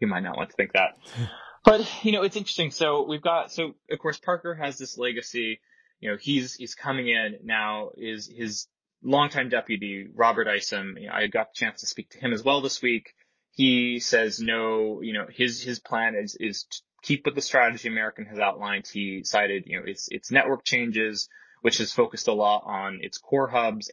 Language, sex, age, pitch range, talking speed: English, male, 20-39, 105-145 Hz, 210 wpm